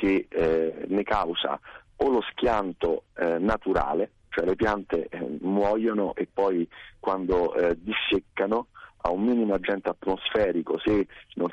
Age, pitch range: 40-59, 95-115 Hz